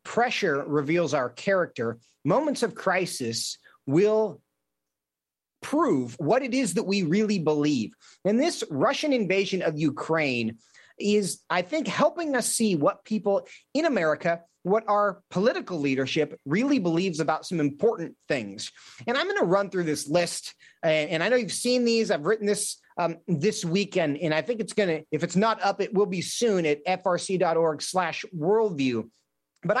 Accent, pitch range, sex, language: American, 160-225 Hz, male, English